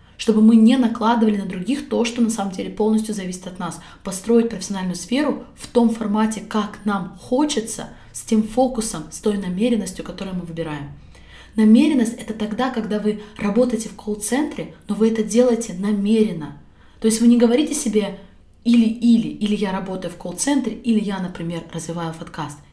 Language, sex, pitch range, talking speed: Russian, female, 185-225 Hz, 170 wpm